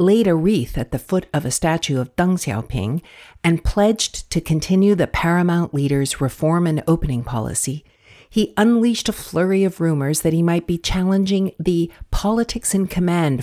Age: 60-79